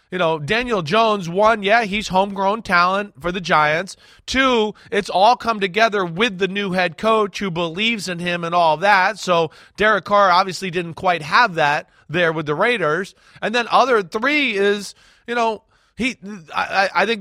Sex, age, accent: male, 30-49, American